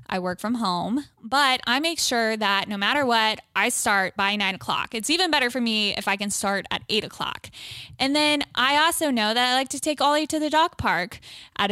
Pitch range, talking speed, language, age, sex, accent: 205-250 Hz, 230 wpm, English, 10-29, female, American